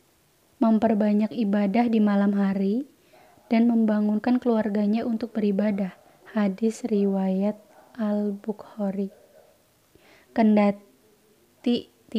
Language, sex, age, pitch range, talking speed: Indonesian, female, 20-39, 210-235 Hz, 75 wpm